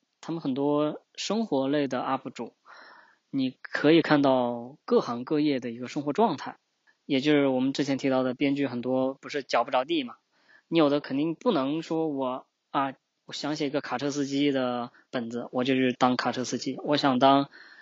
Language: Chinese